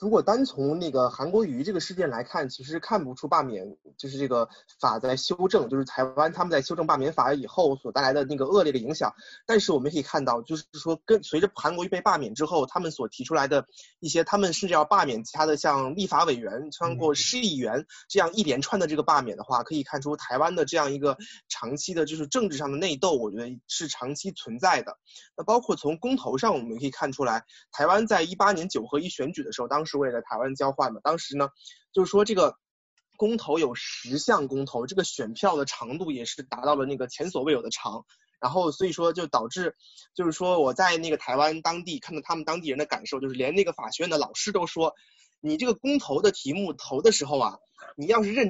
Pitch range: 145-210 Hz